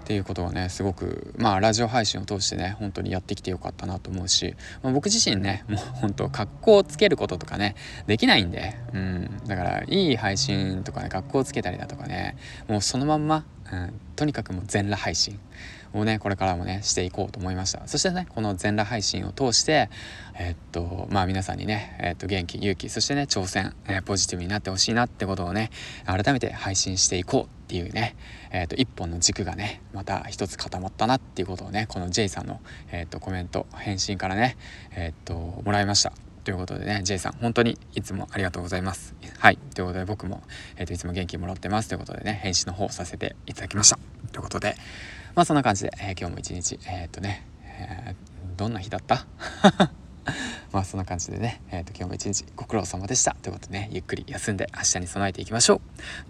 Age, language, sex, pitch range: 20-39, Japanese, male, 95-110 Hz